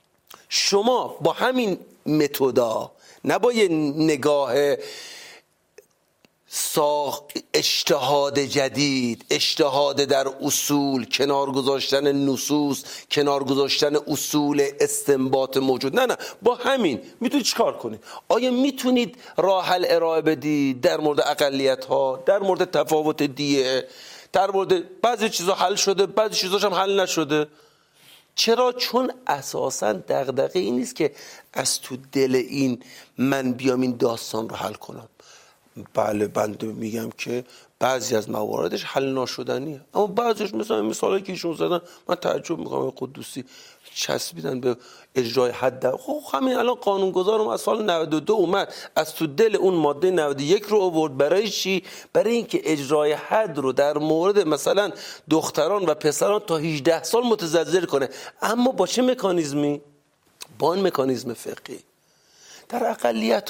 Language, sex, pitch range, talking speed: Persian, male, 135-195 Hz, 130 wpm